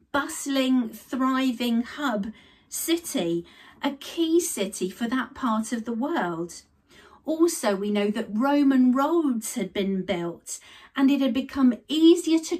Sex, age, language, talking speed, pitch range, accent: female, 50-69, English, 135 wpm, 220-290 Hz, British